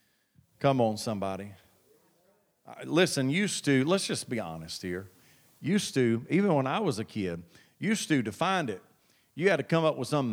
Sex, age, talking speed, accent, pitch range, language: male, 40-59, 180 wpm, American, 115-170 Hz, English